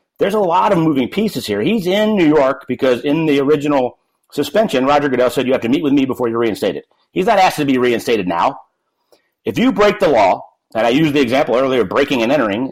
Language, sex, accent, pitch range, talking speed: English, male, American, 125-165 Hz, 235 wpm